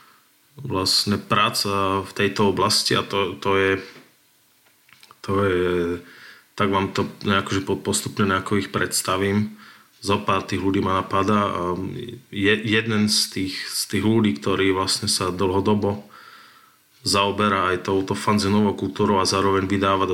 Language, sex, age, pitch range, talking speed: Slovak, male, 20-39, 95-105 Hz, 130 wpm